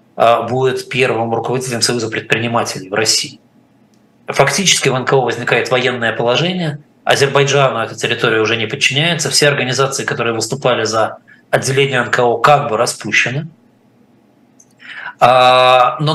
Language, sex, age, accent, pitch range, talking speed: Russian, male, 20-39, native, 120-145 Hz, 110 wpm